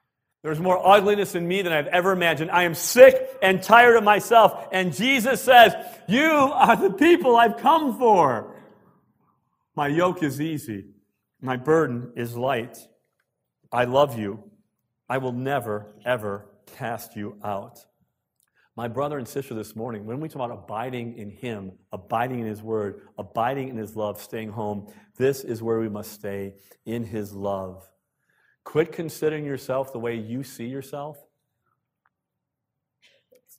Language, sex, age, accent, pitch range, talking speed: English, male, 50-69, American, 110-150 Hz, 150 wpm